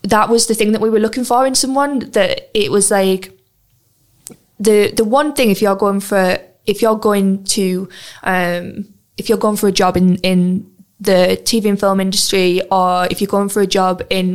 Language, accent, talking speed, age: English, British, 205 wpm, 20-39